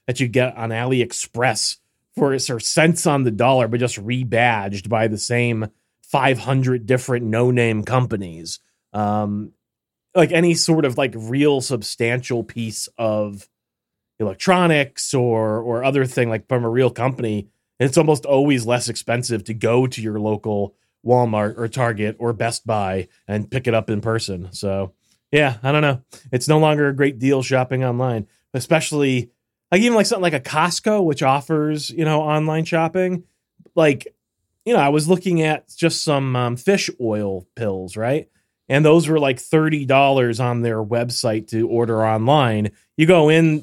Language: English